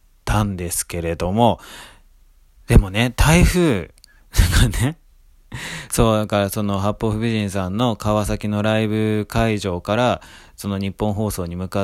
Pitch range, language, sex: 90-115 Hz, Japanese, male